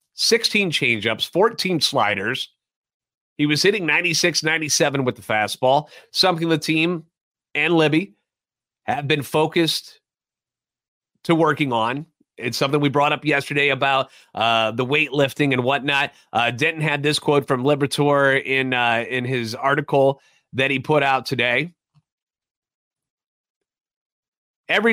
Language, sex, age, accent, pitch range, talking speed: English, male, 30-49, American, 125-155 Hz, 125 wpm